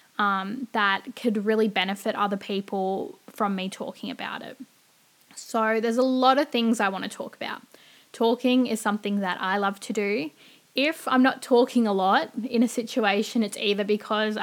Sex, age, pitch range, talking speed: female, 10-29, 200-235 Hz, 180 wpm